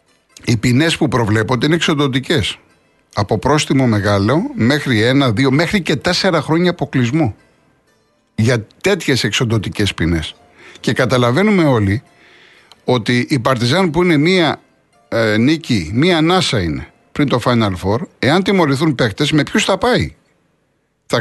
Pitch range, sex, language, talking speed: 115-165 Hz, male, Greek, 135 wpm